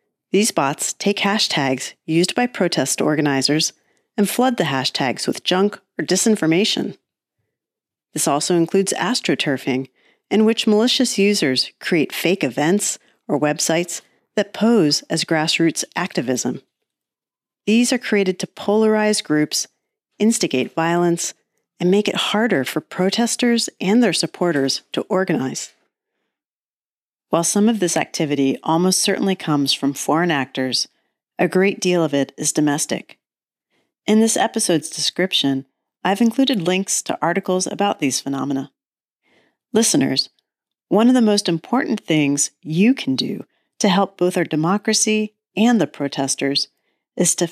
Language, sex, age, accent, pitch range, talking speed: English, female, 40-59, American, 155-215 Hz, 130 wpm